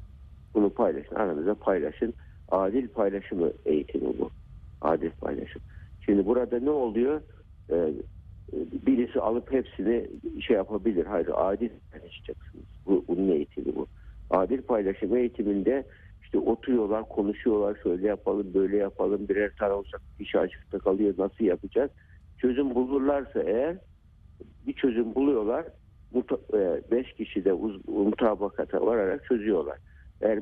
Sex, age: male, 60-79